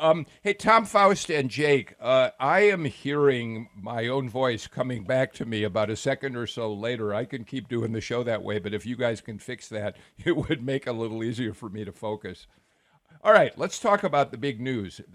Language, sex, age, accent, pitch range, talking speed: English, male, 50-69, American, 105-135 Hz, 225 wpm